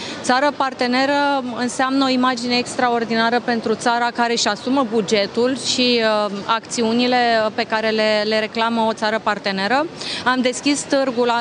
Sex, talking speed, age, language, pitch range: female, 135 wpm, 30-49, Romanian, 225-255 Hz